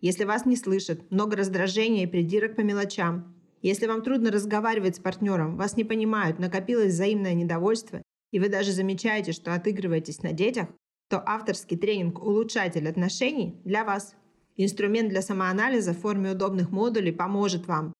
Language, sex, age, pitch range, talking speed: Russian, female, 30-49, 170-210 Hz, 155 wpm